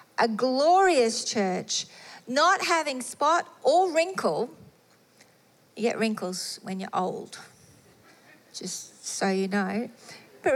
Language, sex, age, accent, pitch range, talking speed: English, female, 40-59, Australian, 210-275 Hz, 110 wpm